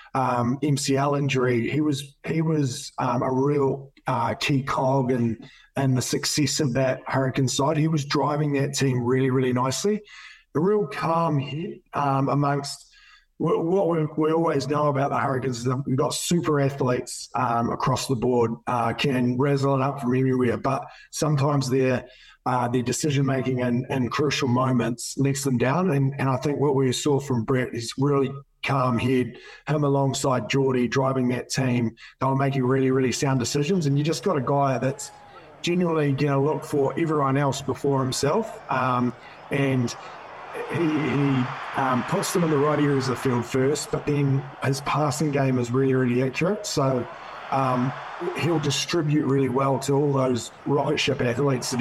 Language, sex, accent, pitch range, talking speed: English, male, Australian, 125-145 Hz, 180 wpm